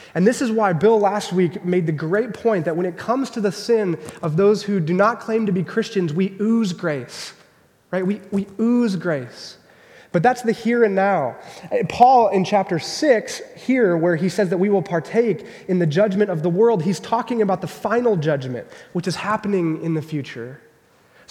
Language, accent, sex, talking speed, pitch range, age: English, American, male, 205 wpm, 170-220 Hz, 20-39